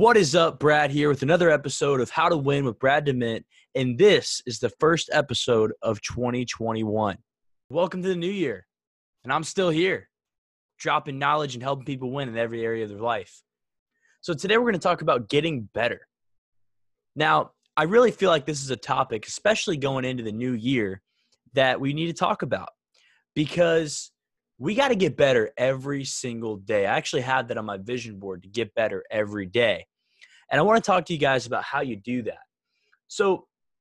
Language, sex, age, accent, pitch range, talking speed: English, male, 20-39, American, 120-170 Hz, 195 wpm